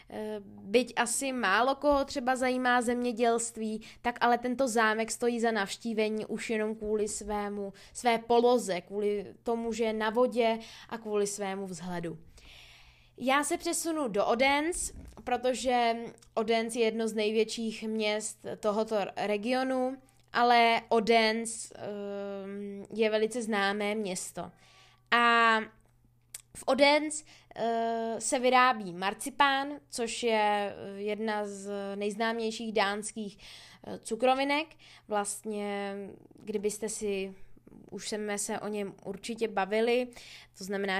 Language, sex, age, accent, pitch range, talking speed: Czech, female, 20-39, native, 200-235 Hz, 110 wpm